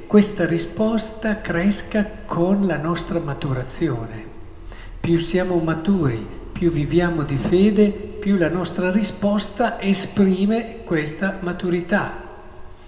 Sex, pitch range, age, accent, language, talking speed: male, 115-170 Hz, 60-79, native, Italian, 100 wpm